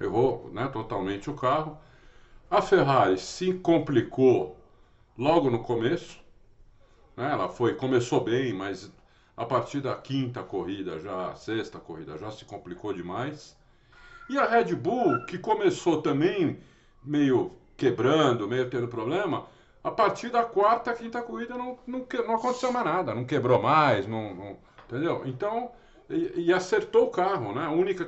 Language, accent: Portuguese, Brazilian